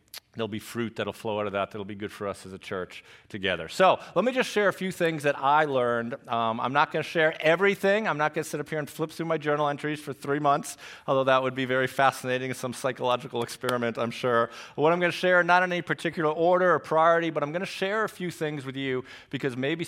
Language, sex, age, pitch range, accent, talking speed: English, male, 40-59, 115-150 Hz, American, 260 wpm